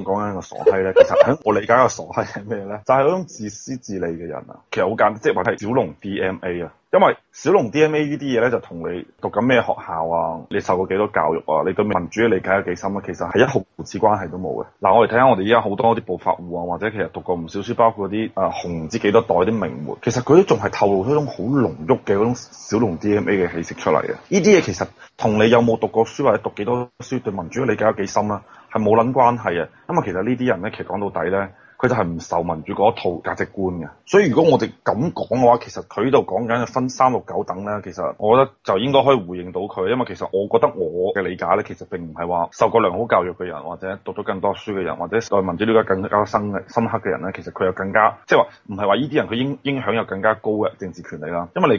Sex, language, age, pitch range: male, Chinese, 20-39, 95-120 Hz